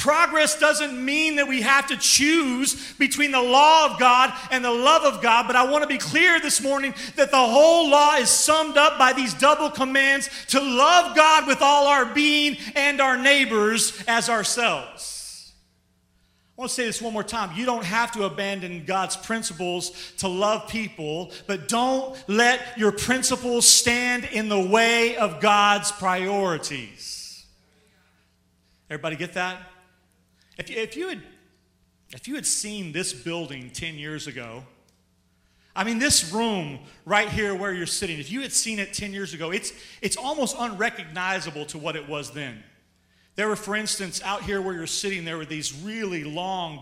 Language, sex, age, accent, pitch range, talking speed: English, male, 40-59, American, 165-260 Hz, 175 wpm